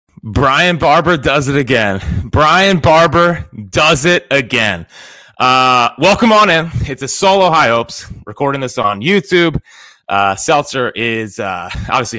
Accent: American